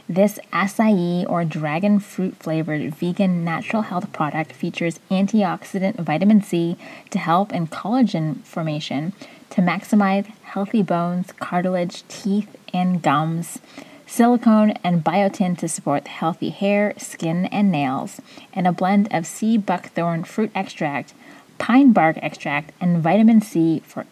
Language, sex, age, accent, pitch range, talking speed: English, female, 20-39, American, 170-215 Hz, 125 wpm